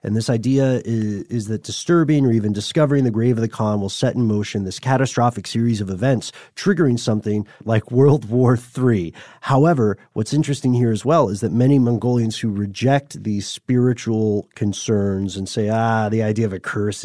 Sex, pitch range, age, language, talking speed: male, 100-125 Hz, 30-49, English, 185 wpm